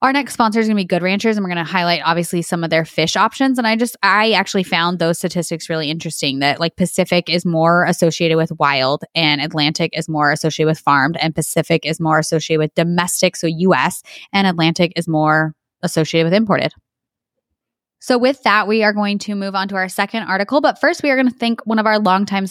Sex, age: female, 20-39